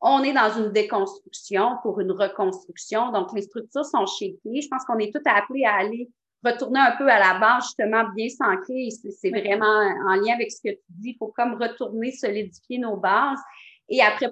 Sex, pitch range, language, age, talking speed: female, 190-240 Hz, French, 30-49, 200 wpm